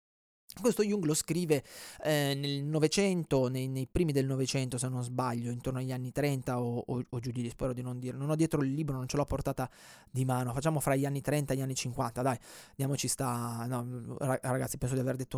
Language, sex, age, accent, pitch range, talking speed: Italian, male, 20-39, native, 130-170 Hz, 215 wpm